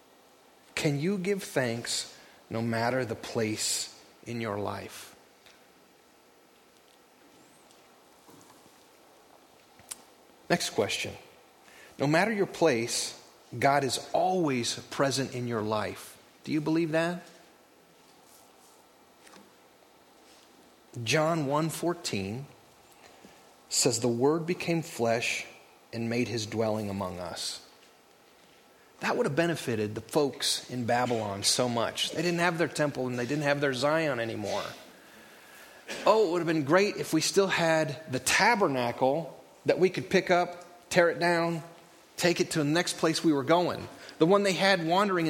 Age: 30-49